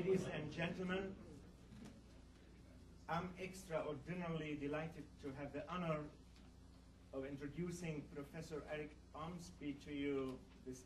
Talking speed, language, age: 100 wpm, English, 50-69